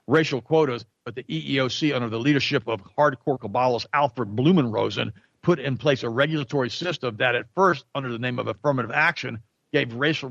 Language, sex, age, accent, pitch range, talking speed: English, male, 50-69, American, 120-145 Hz, 175 wpm